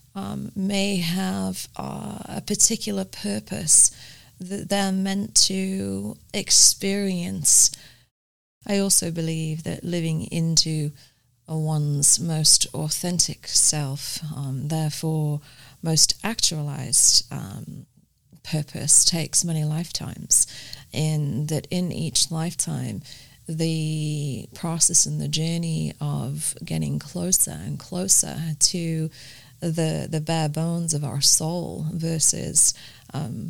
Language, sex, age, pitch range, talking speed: English, female, 30-49, 140-170 Hz, 100 wpm